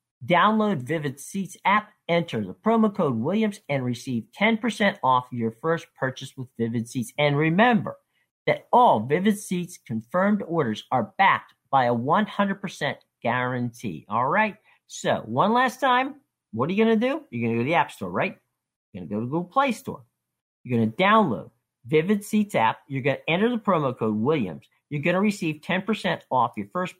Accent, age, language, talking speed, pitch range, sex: American, 50-69, English, 190 wpm, 125-195 Hz, male